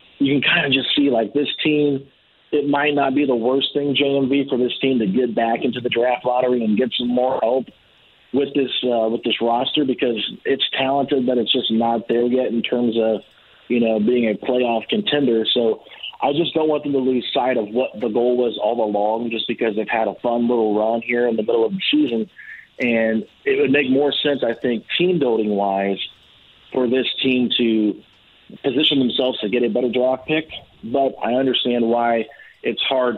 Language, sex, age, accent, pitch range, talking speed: English, male, 40-59, American, 110-130 Hz, 215 wpm